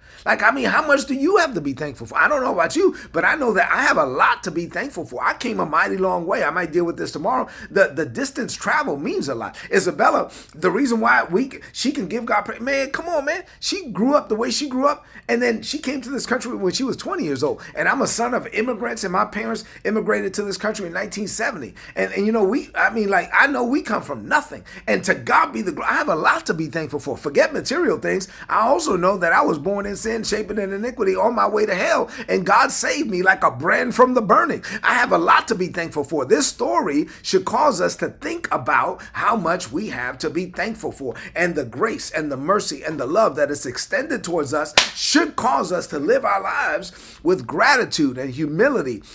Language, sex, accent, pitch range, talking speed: English, male, American, 180-270 Hz, 250 wpm